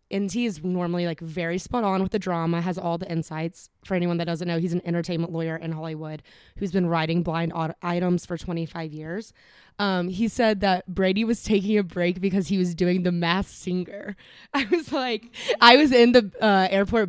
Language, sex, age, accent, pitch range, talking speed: English, female, 20-39, American, 170-210 Hz, 205 wpm